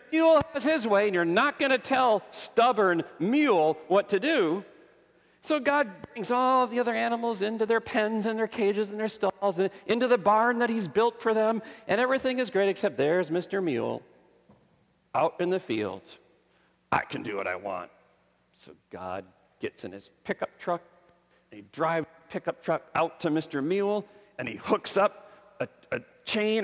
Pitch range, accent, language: 175-255 Hz, American, English